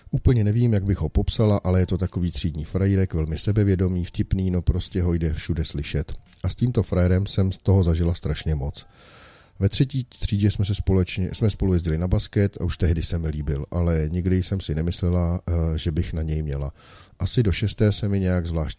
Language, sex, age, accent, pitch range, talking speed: Czech, male, 40-59, native, 80-100 Hz, 210 wpm